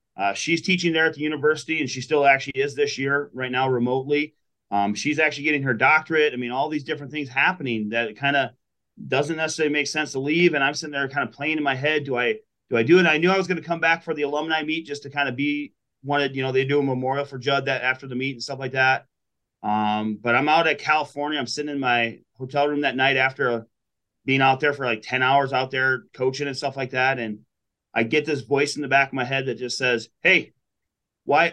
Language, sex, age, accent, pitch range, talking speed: English, male, 30-49, American, 130-150 Hz, 255 wpm